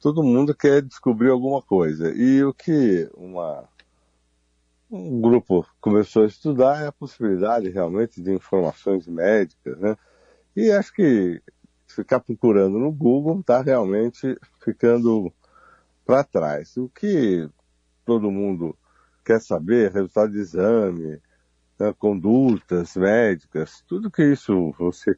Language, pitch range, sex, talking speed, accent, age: Portuguese, 90-140 Hz, male, 120 wpm, Brazilian, 50-69